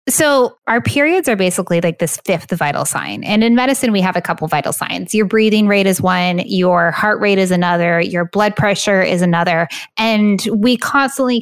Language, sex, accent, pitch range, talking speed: English, female, American, 180-230 Hz, 195 wpm